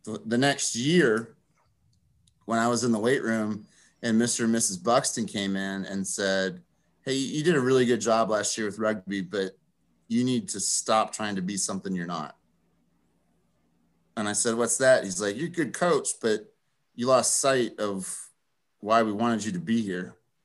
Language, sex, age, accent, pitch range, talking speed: English, male, 30-49, American, 110-130 Hz, 190 wpm